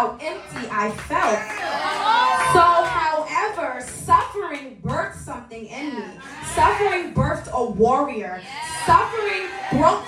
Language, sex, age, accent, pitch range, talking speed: English, female, 20-39, American, 285-360 Hz, 95 wpm